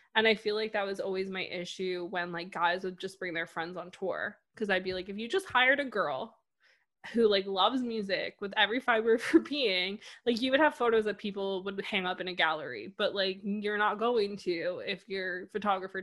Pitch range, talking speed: 185-225 Hz, 230 wpm